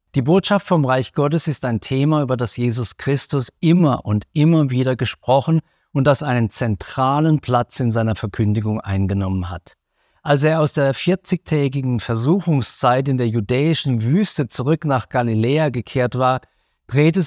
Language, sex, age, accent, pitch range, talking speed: German, male, 50-69, German, 105-150 Hz, 150 wpm